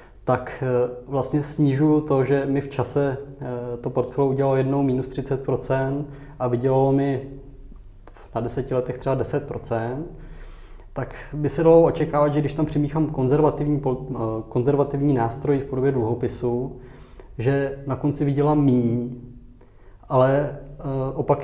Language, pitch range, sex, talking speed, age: Czech, 120-140 Hz, male, 125 wpm, 20-39